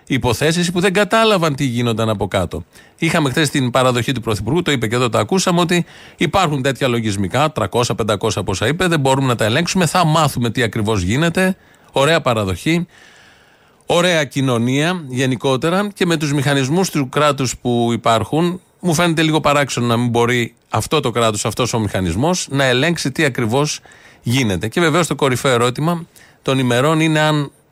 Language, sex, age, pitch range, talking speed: Greek, male, 30-49, 120-165 Hz, 170 wpm